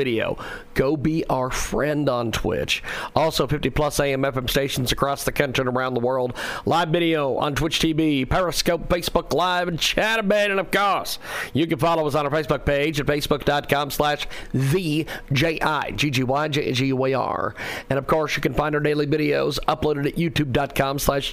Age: 40-59